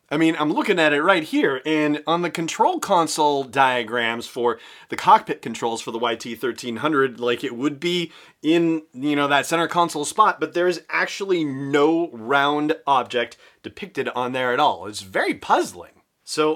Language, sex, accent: English, male, American